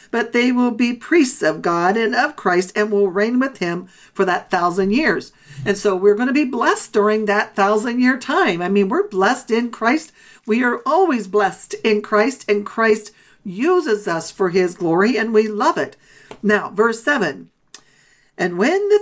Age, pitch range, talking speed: 50-69, 190-230 Hz, 190 wpm